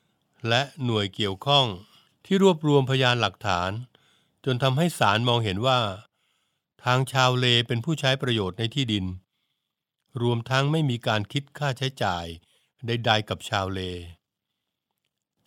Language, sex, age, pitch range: Thai, male, 60-79, 105-135 Hz